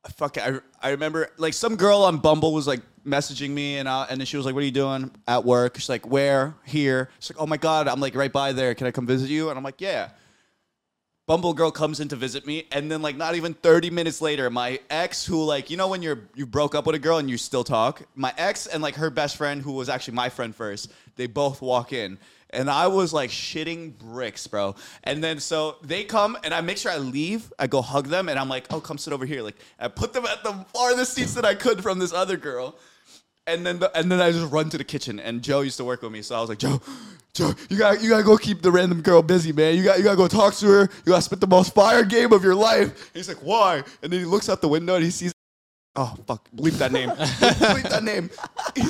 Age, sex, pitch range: 20-39, male, 135-195 Hz